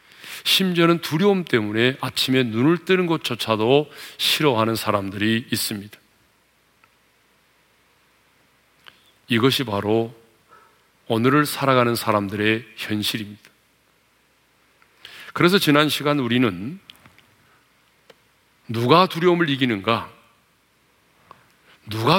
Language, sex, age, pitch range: Korean, male, 40-59, 110-150 Hz